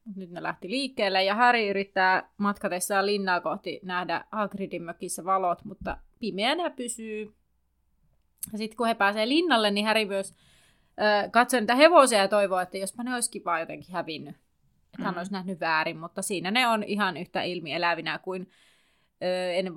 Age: 30-49